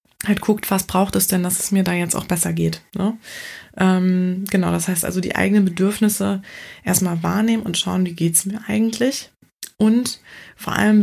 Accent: German